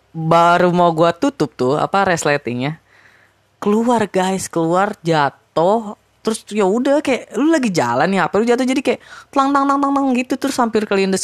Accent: native